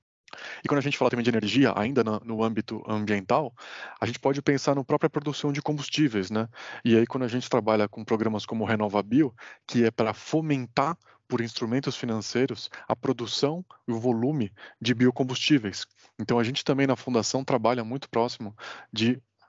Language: Portuguese